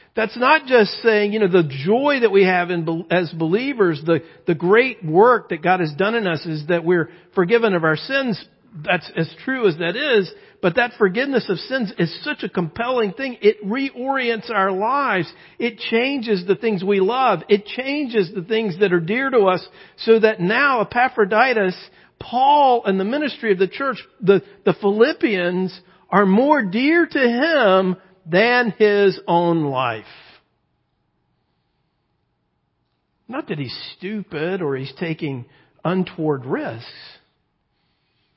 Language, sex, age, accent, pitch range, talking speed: English, male, 50-69, American, 165-235 Hz, 155 wpm